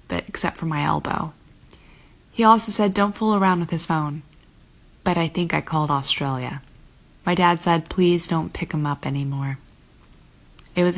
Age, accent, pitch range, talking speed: 20-39, American, 150-185 Hz, 170 wpm